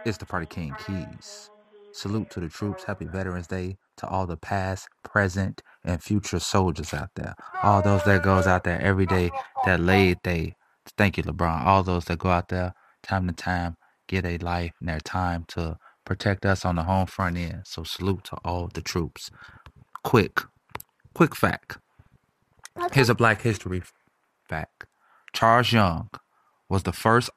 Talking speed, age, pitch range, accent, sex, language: 170 wpm, 30-49, 90-115 Hz, American, male, English